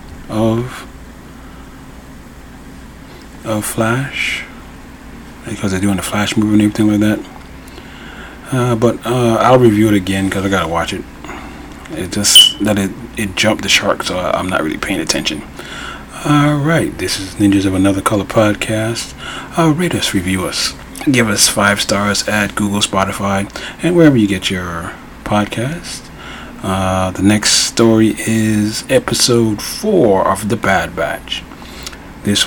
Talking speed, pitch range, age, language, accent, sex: 145 wpm, 95-120 Hz, 30-49, English, American, male